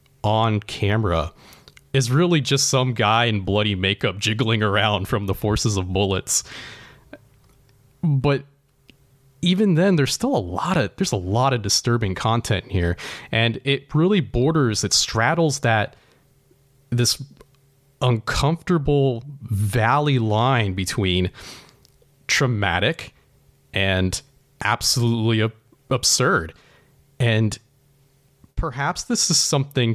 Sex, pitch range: male, 100-135 Hz